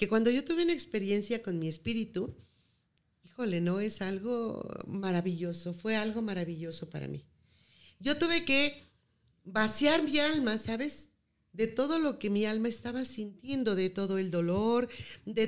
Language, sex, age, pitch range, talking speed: Spanish, female, 40-59, 180-245 Hz, 145 wpm